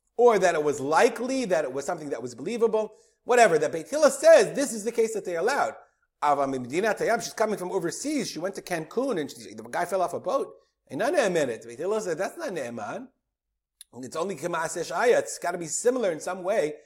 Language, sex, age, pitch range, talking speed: English, male, 40-59, 175-250 Hz, 200 wpm